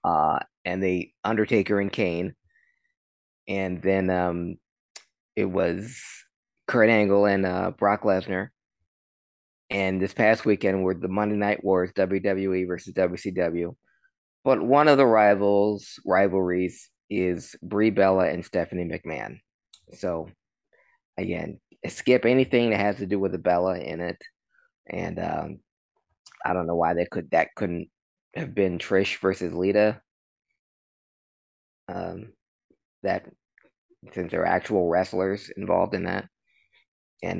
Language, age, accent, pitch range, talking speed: English, 20-39, American, 90-110 Hz, 130 wpm